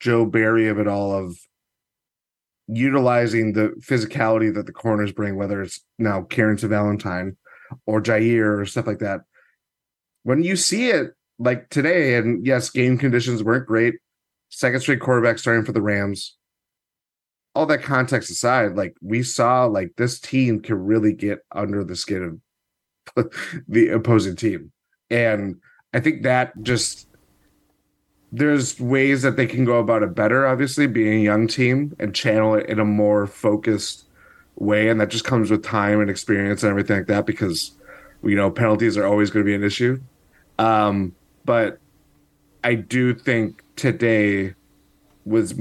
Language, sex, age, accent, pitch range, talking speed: English, male, 30-49, American, 105-125 Hz, 160 wpm